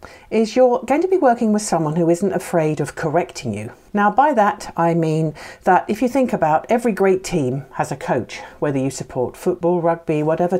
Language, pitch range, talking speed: English, 160-220 Hz, 205 wpm